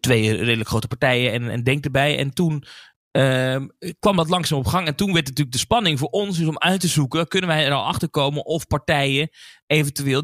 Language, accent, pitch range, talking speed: Dutch, Dutch, 120-165 Hz, 230 wpm